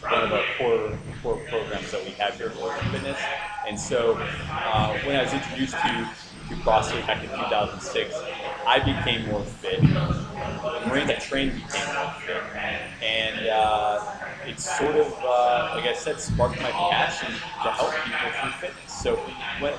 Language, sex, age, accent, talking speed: English, male, 30-49, American, 175 wpm